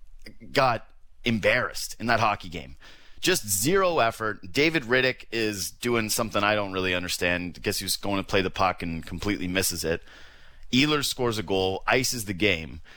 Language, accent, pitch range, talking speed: English, American, 90-145 Hz, 180 wpm